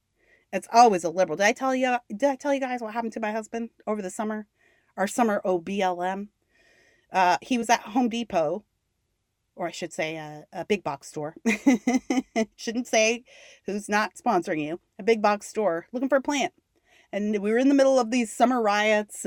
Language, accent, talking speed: English, American, 195 wpm